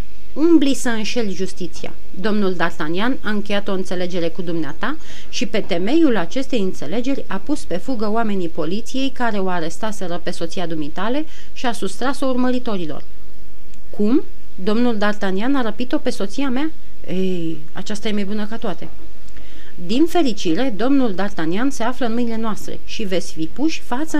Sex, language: female, Romanian